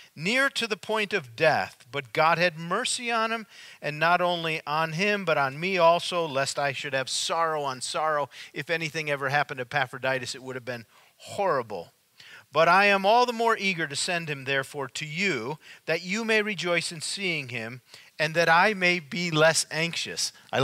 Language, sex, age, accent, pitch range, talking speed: English, male, 40-59, American, 140-180 Hz, 195 wpm